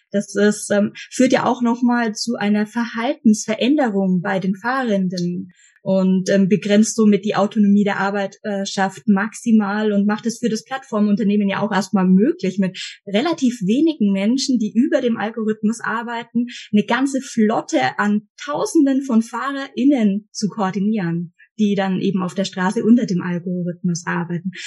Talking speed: 155 wpm